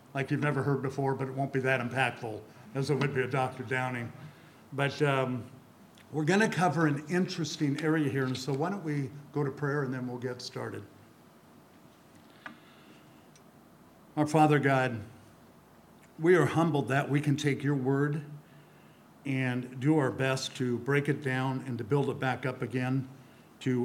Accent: American